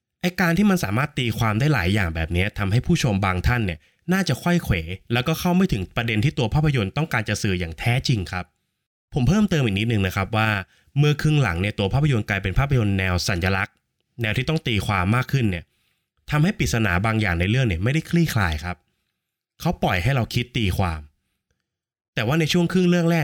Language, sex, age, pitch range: Thai, male, 20-39, 95-135 Hz